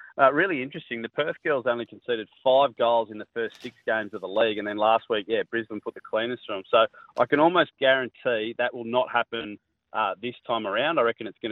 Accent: Australian